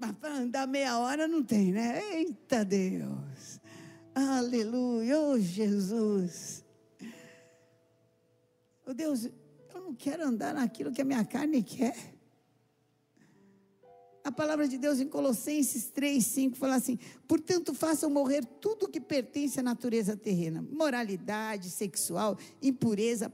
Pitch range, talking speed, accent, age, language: 230-290 Hz, 120 wpm, Brazilian, 50-69, Portuguese